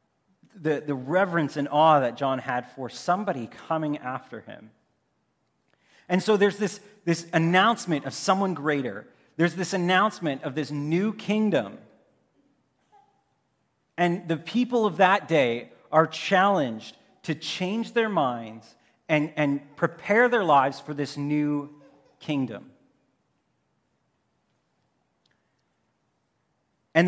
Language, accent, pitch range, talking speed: English, American, 145-190 Hz, 115 wpm